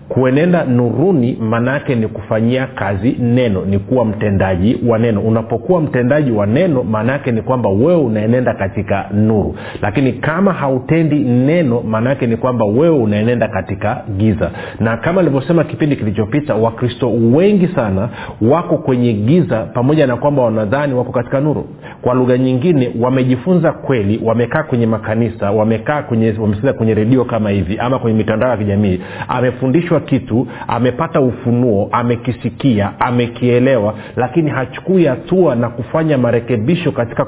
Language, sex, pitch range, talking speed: Swahili, male, 110-140 Hz, 135 wpm